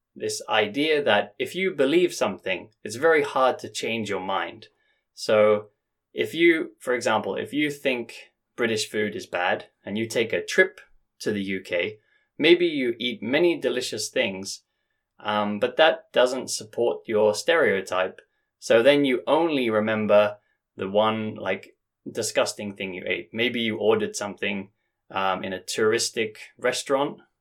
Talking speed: 150 wpm